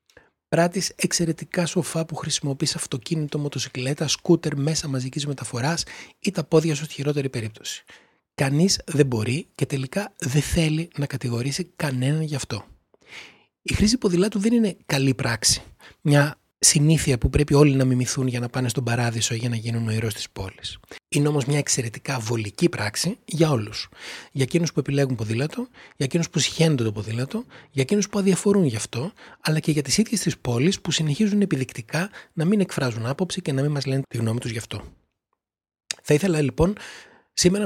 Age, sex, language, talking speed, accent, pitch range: 30-49, male, Greek, 175 wpm, native, 120-170 Hz